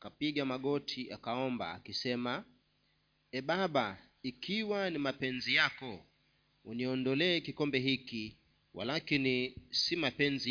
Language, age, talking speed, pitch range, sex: Swahili, 40-59, 95 wpm, 115-150 Hz, male